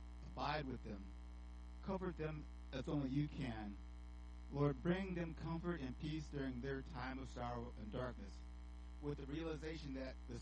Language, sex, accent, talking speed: English, male, American, 155 wpm